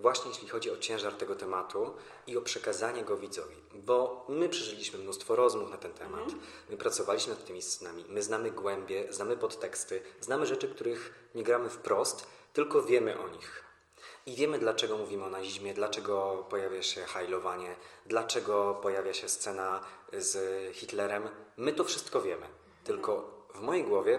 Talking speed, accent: 160 wpm, native